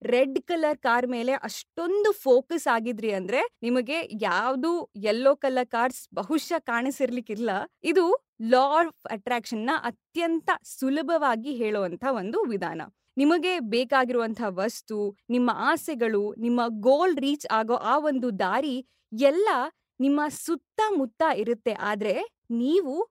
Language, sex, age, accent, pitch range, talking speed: Kannada, female, 20-39, native, 235-320 Hz, 110 wpm